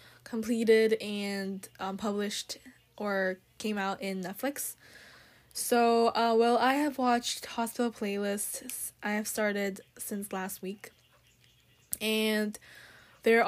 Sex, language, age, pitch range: female, Korean, 10-29, 205-235 Hz